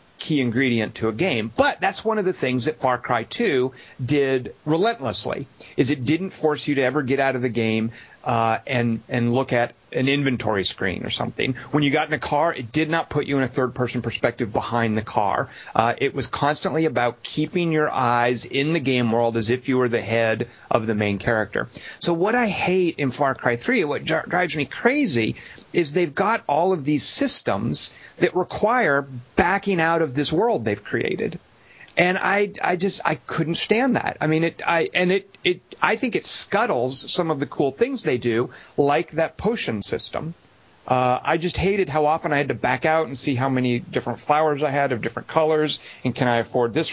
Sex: male